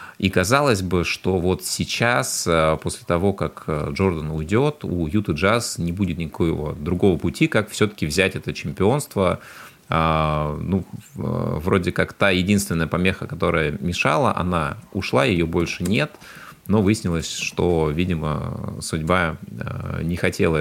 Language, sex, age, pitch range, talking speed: Russian, male, 30-49, 75-95 Hz, 130 wpm